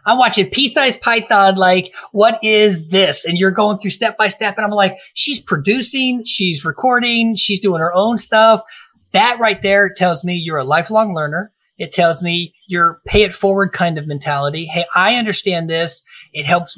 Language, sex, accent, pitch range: English, male, American, 160-205 Hz